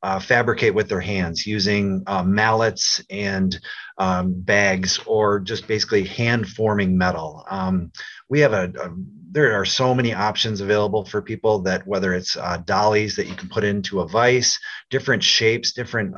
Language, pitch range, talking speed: English, 95-125 Hz, 165 wpm